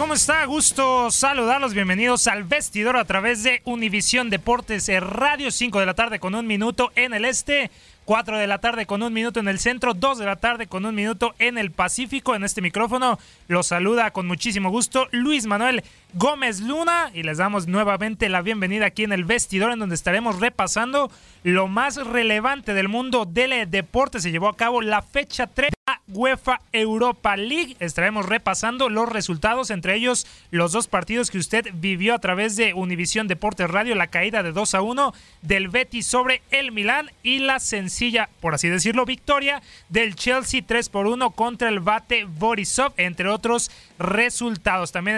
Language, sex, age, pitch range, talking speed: Spanish, male, 30-49, 200-245 Hz, 180 wpm